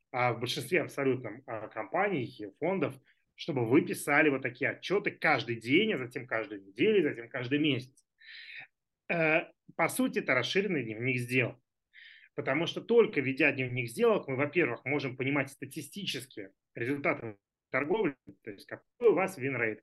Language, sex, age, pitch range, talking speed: Russian, male, 30-49, 130-170 Hz, 145 wpm